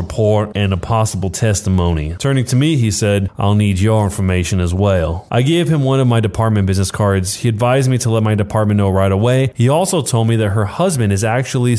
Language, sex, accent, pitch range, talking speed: English, male, American, 100-135 Hz, 225 wpm